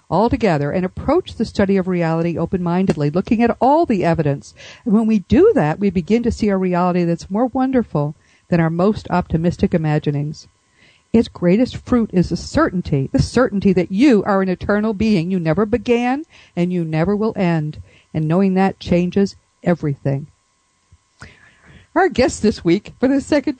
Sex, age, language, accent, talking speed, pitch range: female, 50-69, English, American, 170 wpm, 170-220 Hz